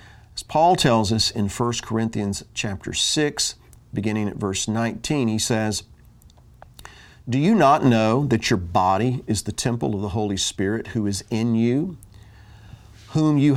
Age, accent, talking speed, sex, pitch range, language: 40-59, American, 155 wpm, male, 105-140 Hz, English